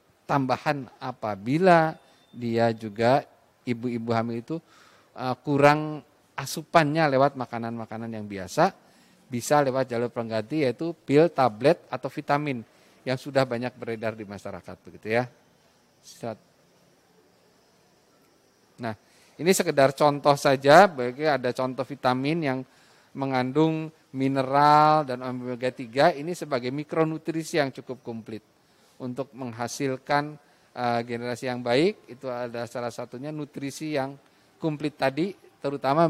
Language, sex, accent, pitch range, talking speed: Indonesian, male, native, 120-150 Hz, 110 wpm